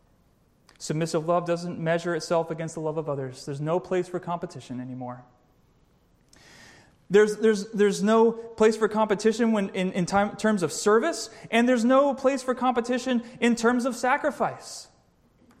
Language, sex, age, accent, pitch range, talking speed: English, male, 30-49, American, 150-220 Hz, 155 wpm